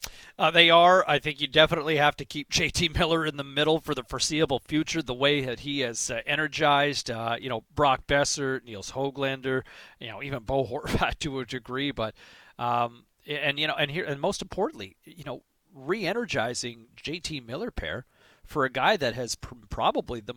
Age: 40-59